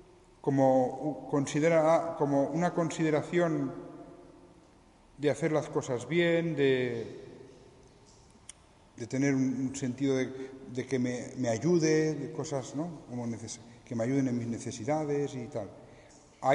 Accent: Spanish